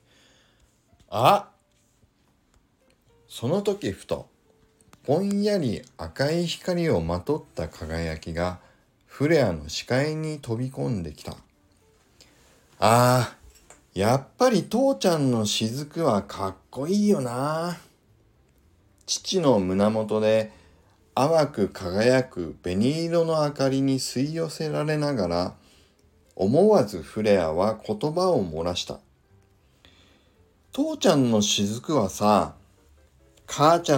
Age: 60-79